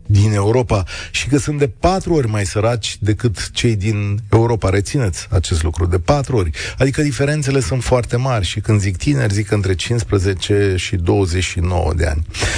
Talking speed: 170 wpm